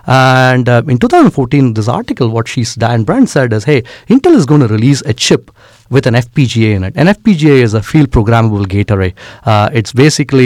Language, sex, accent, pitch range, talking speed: English, male, Indian, 110-140 Hz, 205 wpm